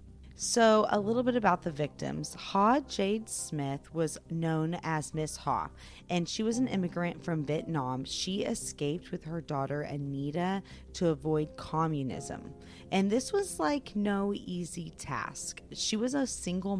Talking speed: 150 wpm